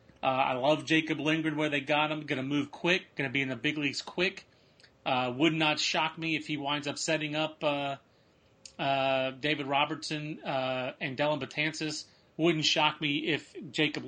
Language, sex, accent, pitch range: English, male, American, 135-160 Hz